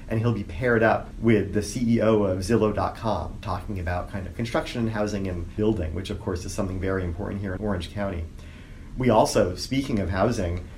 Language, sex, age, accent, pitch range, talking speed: English, male, 40-59, American, 95-115 Hz, 195 wpm